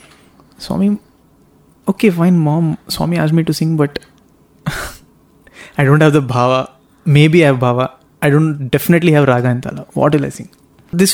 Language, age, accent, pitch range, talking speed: English, 20-39, Indian, 130-160 Hz, 165 wpm